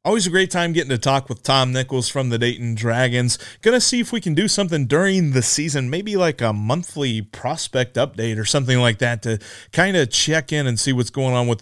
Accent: American